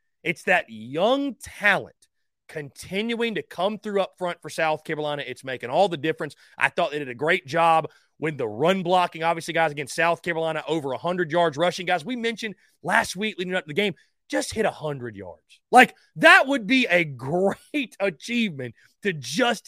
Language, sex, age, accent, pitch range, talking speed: English, male, 30-49, American, 155-220 Hz, 185 wpm